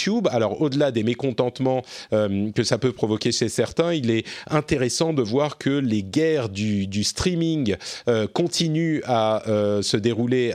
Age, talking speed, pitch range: 40-59, 160 wpm, 110-145 Hz